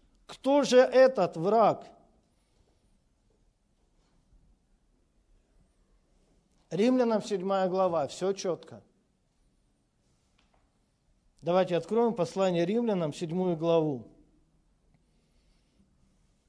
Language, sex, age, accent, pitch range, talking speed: Russian, male, 50-69, native, 185-245 Hz, 55 wpm